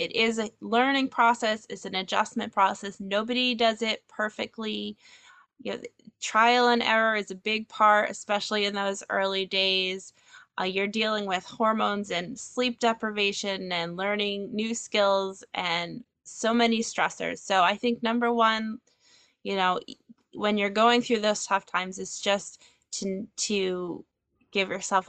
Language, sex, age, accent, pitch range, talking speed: English, female, 20-39, American, 195-230 Hz, 150 wpm